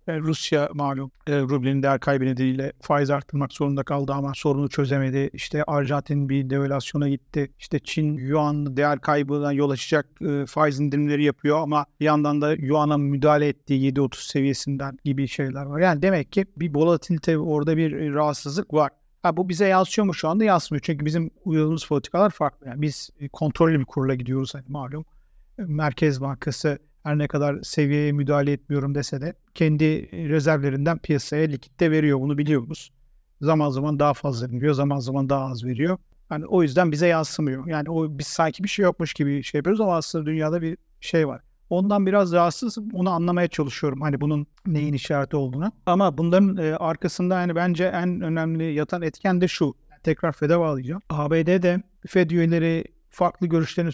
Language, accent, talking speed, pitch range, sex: Turkish, native, 165 wpm, 140-165 Hz, male